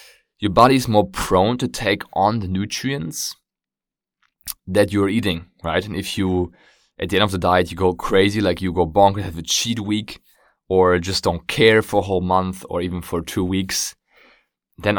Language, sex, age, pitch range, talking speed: English, male, 20-39, 90-110 Hz, 190 wpm